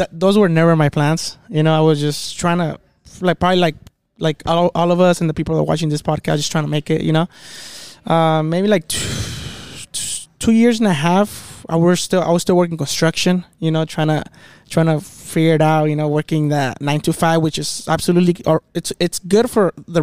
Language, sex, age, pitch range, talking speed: English, male, 20-39, 160-180 Hz, 230 wpm